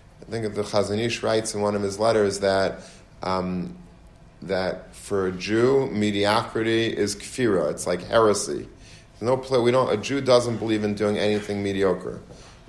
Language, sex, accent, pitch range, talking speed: English, male, American, 100-125 Hz, 170 wpm